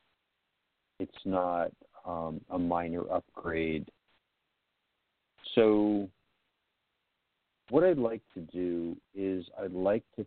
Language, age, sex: English, 50-69, male